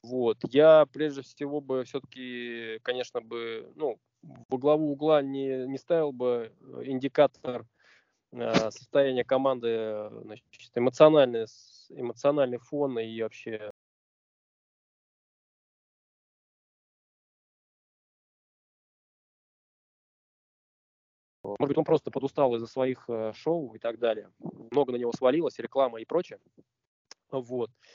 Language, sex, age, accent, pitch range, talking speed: Russian, male, 20-39, native, 115-145 Hz, 100 wpm